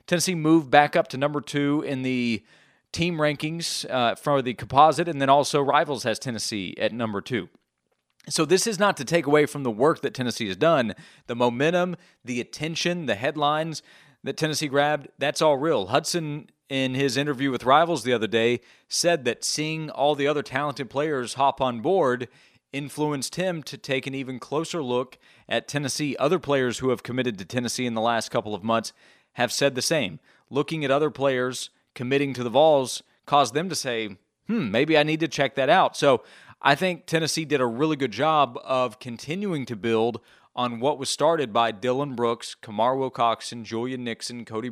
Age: 40-59